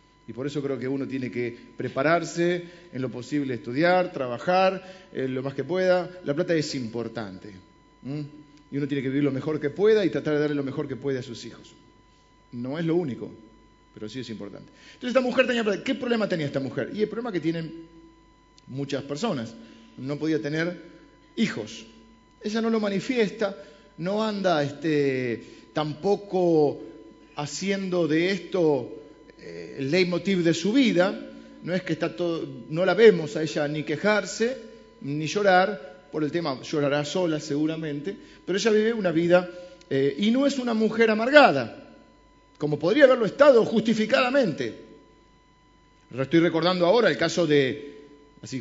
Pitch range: 135-185 Hz